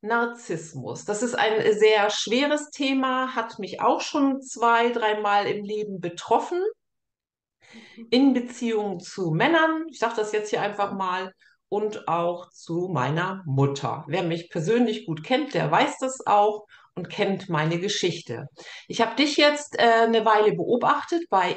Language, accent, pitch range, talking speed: German, German, 195-260 Hz, 150 wpm